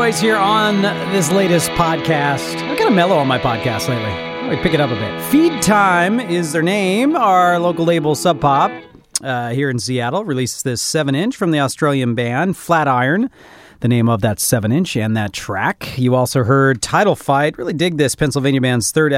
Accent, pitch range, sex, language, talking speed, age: American, 120-185 Hz, male, English, 195 wpm, 40-59